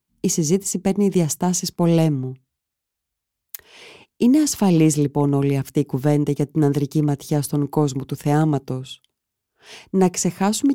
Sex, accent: female, native